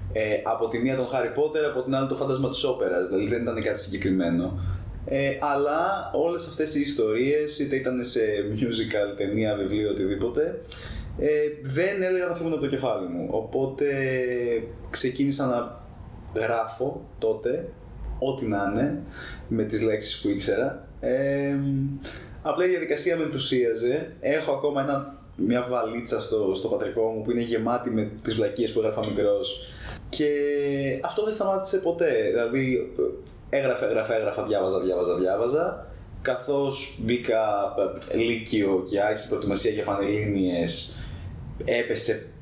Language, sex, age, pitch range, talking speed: Greek, male, 20-39, 105-145 Hz, 140 wpm